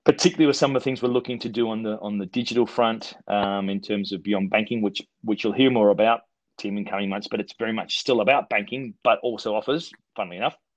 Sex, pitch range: male, 100-120 Hz